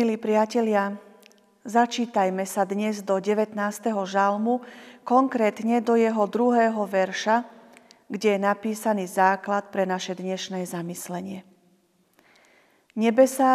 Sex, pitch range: female, 195-230 Hz